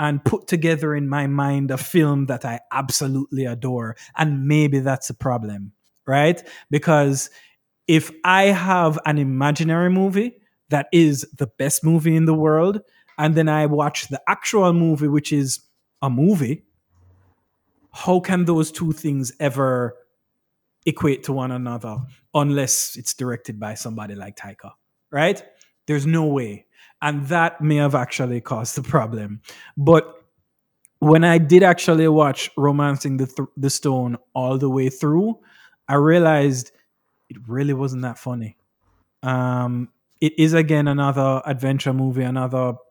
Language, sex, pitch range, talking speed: English, male, 125-155 Hz, 145 wpm